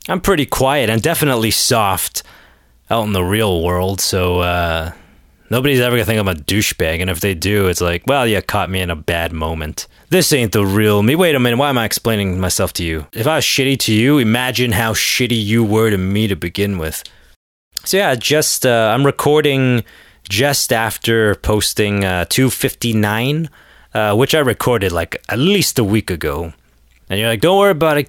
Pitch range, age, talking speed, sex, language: 95-140 Hz, 20-39, 200 wpm, male, English